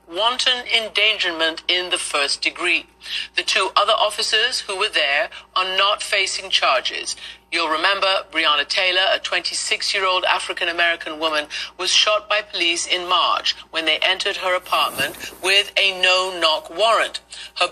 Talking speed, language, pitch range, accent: 145 wpm, English, 175-210 Hz, British